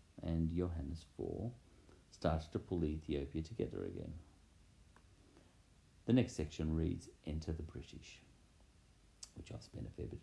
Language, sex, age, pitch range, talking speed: English, male, 50-69, 80-100 Hz, 130 wpm